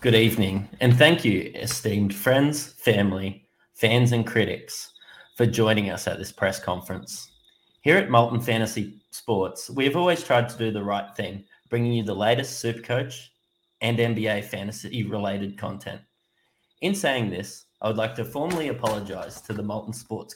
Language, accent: English, Australian